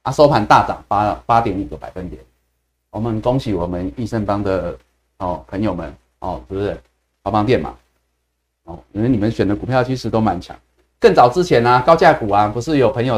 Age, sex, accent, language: 30-49, male, native, Chinese